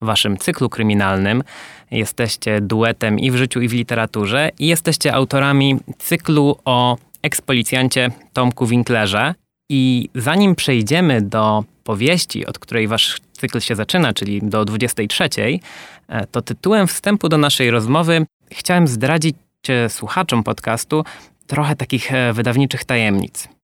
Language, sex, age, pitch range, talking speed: Polish, male, 20-39, 110-145 Hz, 120 wpm